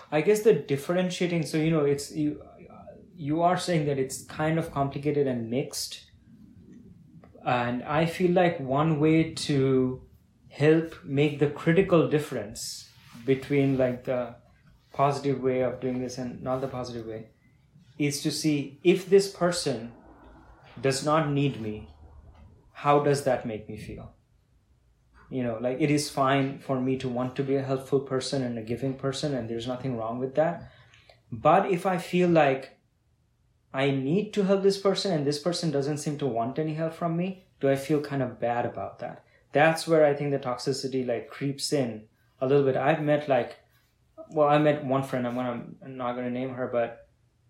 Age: 20-39